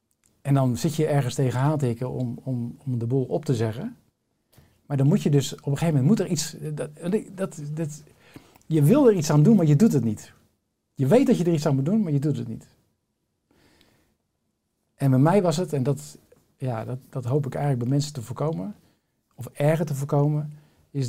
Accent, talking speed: Dutch, 220 wpm